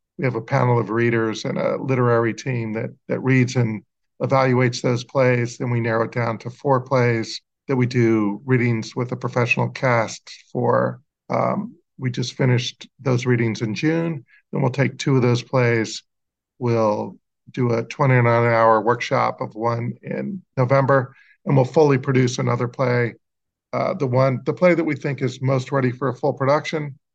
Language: English